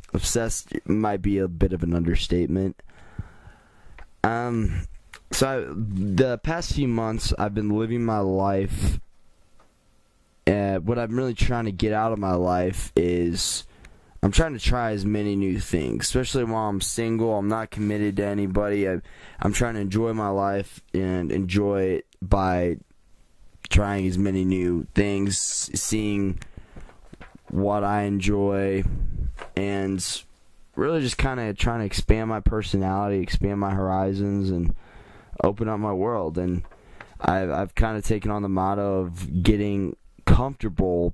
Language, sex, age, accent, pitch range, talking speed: English, male, 20-39, American, 90-105 Hz, 145 wpm